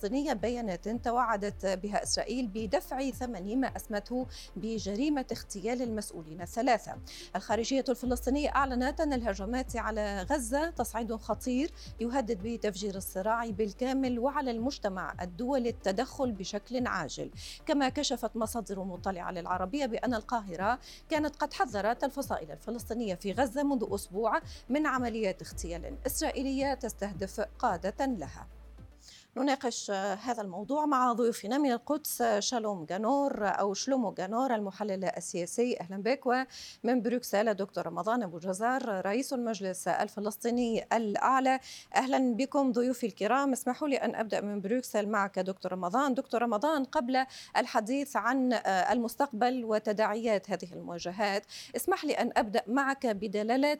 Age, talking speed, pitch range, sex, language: 40-59, 120 wpm, 205-260 Hz, female, Arabic